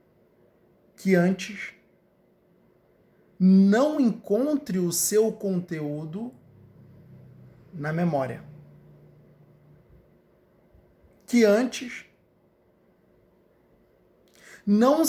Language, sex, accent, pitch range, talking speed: Portuguese, male, Brazilian, 160-205 Hz, 50 wpm